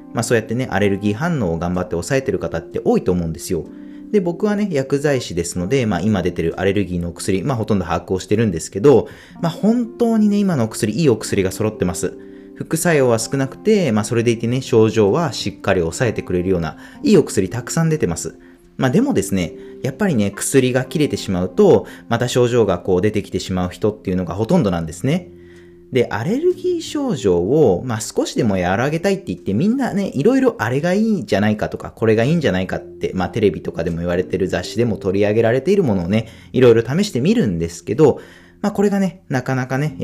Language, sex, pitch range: Japanese, male, 90-145 Hz